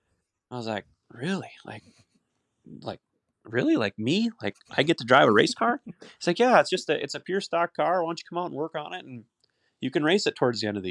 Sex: male